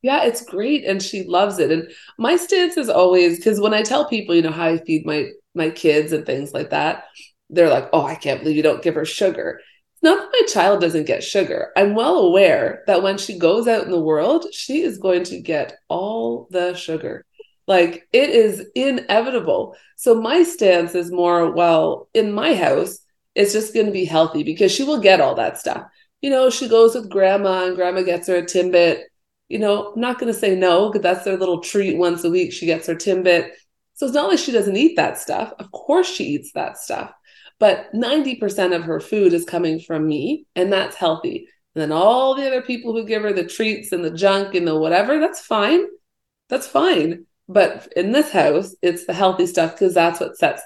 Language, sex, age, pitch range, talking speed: English, female, 30-49, 175-275 Hz, 220 wpm